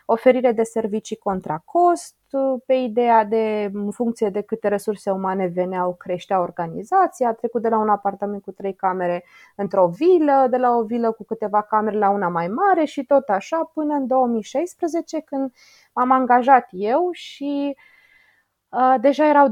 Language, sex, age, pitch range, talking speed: Romanian, female, 20-39, 205-275 Hz, 165 wpm